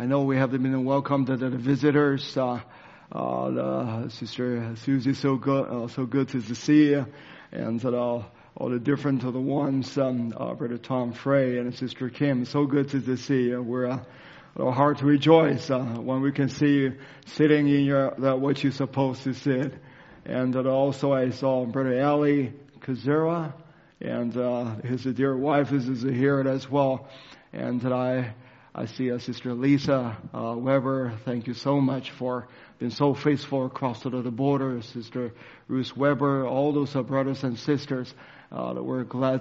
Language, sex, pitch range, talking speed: English, male, 125-140 Hz, 175 wpm